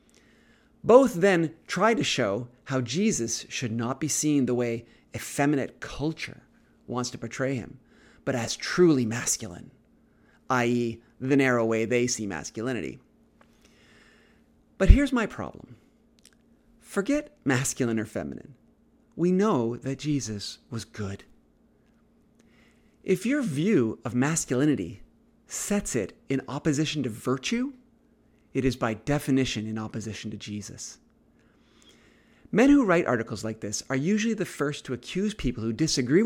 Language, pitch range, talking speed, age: English, 120-190 Hz, 130 wpm, 30-49